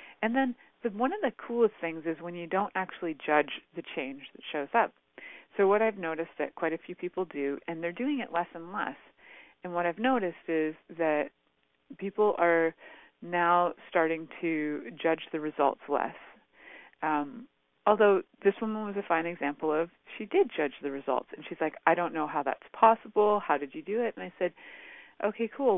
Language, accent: English, American